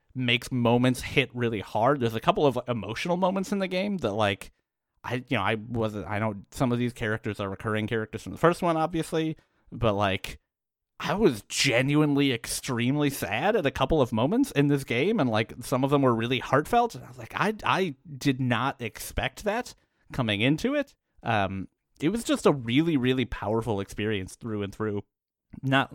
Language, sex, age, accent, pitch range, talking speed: English, male, 30-49, American, 105-135 Hz, 195 wpm